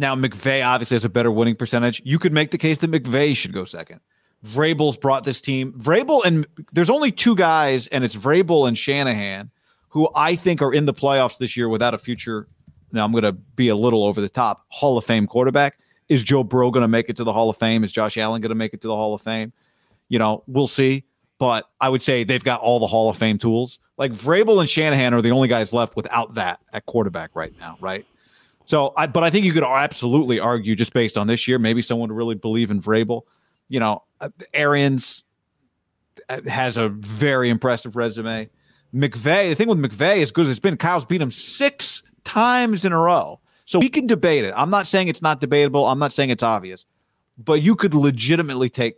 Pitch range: 115-150 Hz